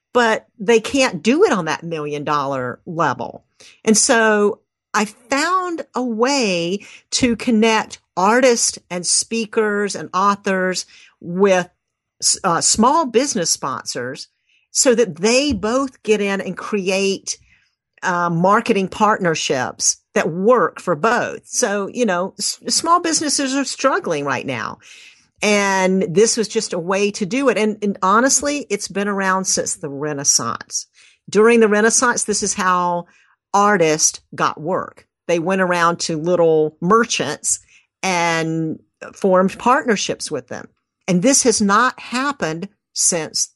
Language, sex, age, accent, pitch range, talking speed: English, female, 50-69, American, 185-240 Hz, 130 wpm